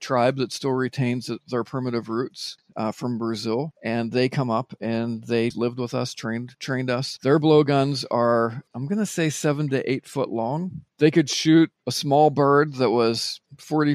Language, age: English, 40-59